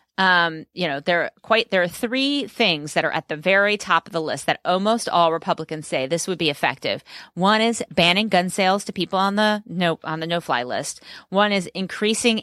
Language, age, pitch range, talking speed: English, 30-49, 165-210 Hz, 220 wpm